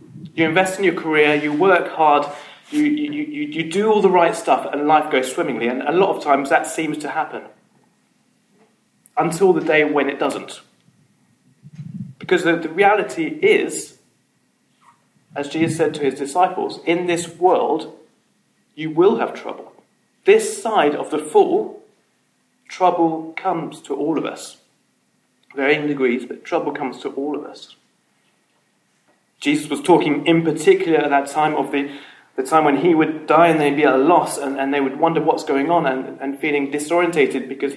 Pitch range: 145-215 Hz